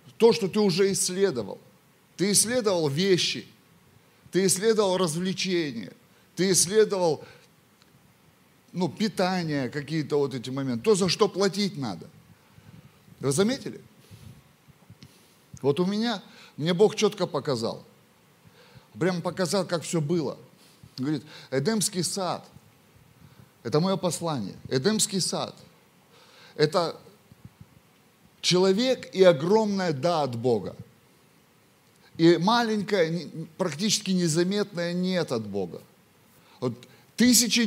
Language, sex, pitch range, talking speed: Russian, male, 160-200 Hz, 95 wpm